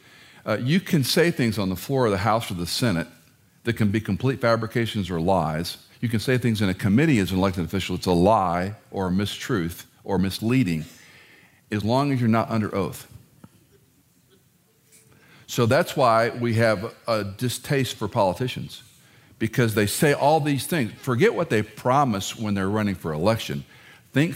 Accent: American